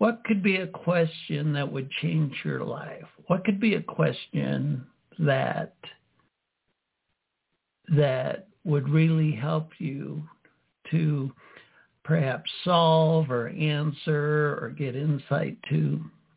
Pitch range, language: 150-185 Hz, English